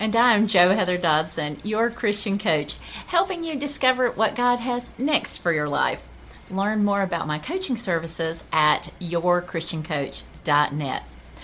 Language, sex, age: English, female, 50-69